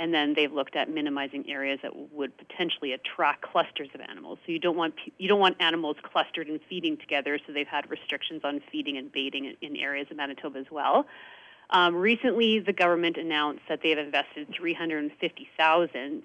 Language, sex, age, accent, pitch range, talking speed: English, female, 30-49, American, 155-200 Hz, 175 wpm